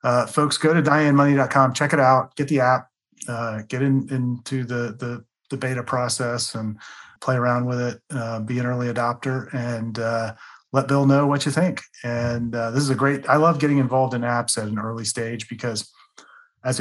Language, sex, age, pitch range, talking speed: English, male, 30-49, 115-140 Hz, 200 wpm